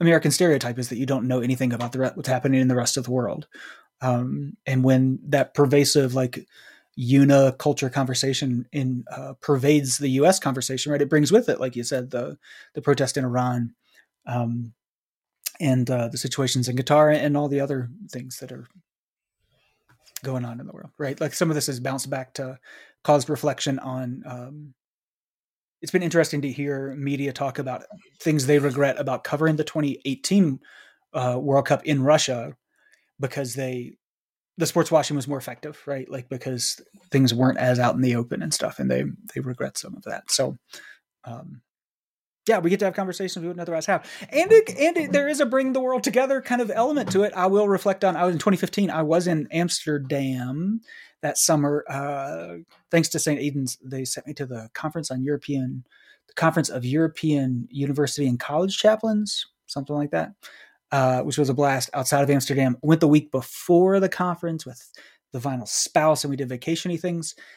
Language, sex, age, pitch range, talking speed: English, male, 30-49, 130-160 Hz, 190 wpm